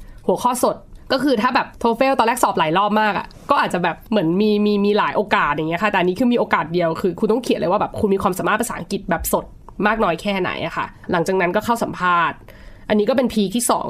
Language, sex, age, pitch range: Thai, female, 20-39, 170-220 Hz